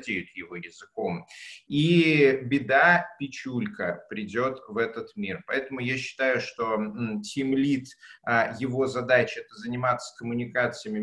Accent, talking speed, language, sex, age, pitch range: native, 110 wpm, Russian, male, 30-49, 115-150 Hz